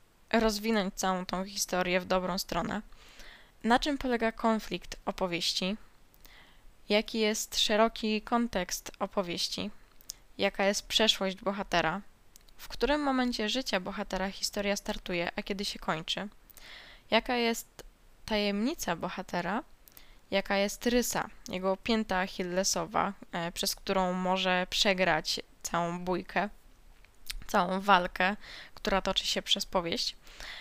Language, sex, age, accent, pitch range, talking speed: Polish, female, 10-29, native, 190-225 Hz, 110 wpm